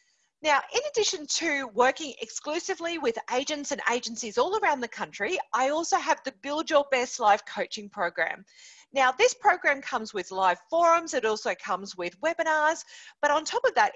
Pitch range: 225-360 Hz